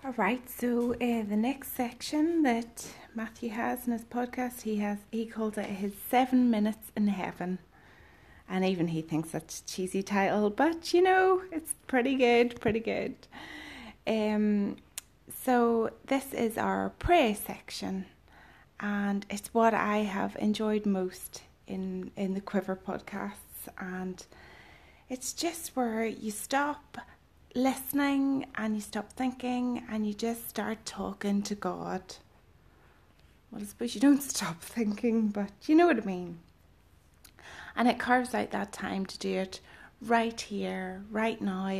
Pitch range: 190-245 Hz